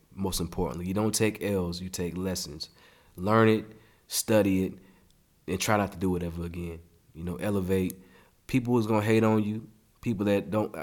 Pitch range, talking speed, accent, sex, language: 90-105 Hz, 190 wpm, American, male, English